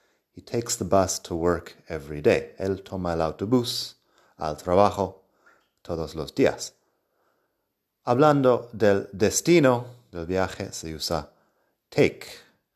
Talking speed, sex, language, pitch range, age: 120 wpm, male, Spanish, 85-120 Hz, 30-49